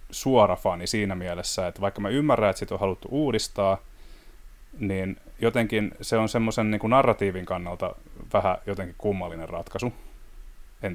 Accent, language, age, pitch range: native, Finnish, 30-49, 95-110 Hz